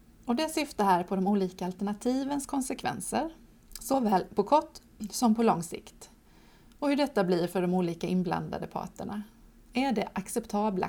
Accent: native